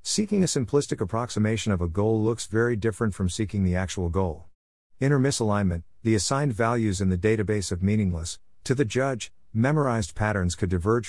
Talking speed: 175 wpm